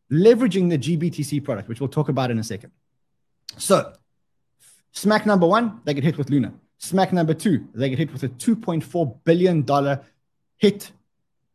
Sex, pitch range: male, 135-180 Hz